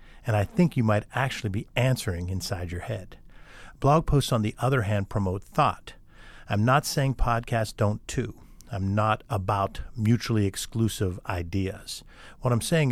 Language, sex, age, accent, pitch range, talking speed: English, male, 50-69, American, 100-125 Hz, 160 wpm